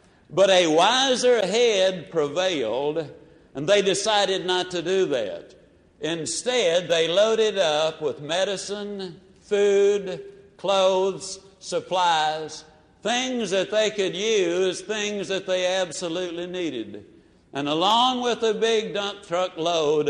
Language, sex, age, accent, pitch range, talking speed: English, male, 60-79, American, 160-205 Hz, 115 wpm